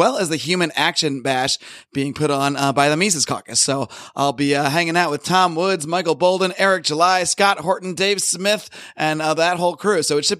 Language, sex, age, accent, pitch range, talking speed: English, male, 30-49, American, 145-170 Hz, 230 wpm